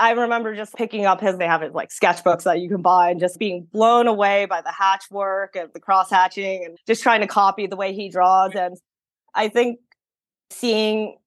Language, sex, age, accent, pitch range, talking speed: English, female, 20-39, American, 180-225 Hz, 220 wpm